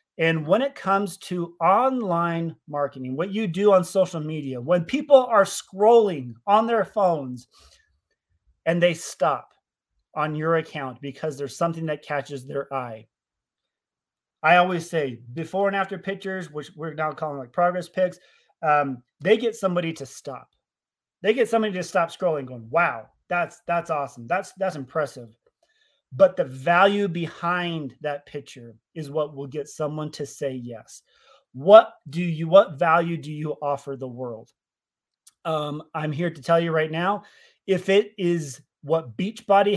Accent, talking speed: American, 155 wpm